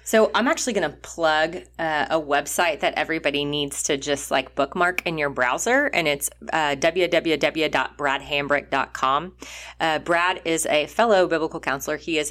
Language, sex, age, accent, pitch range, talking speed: English, female, 30-49, American, 140-175 Hz, 145 wpm